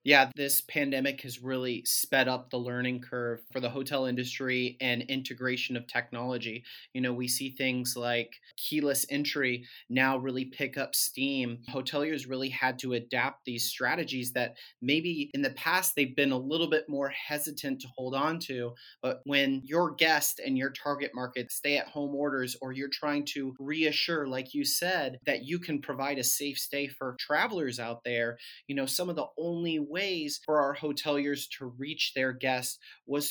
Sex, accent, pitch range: male, American, 125-145 Hz